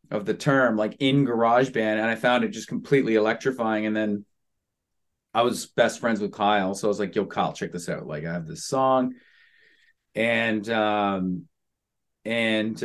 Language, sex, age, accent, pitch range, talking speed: English, male, 30-49, American, 105-130 Hz, 175 wpm